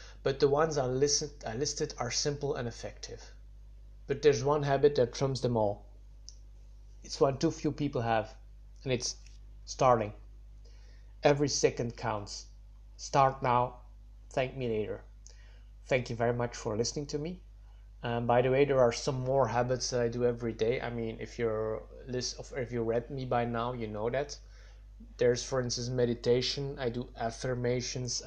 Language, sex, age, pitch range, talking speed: English, male, 30-49, 110-130 Hz, 160 wpm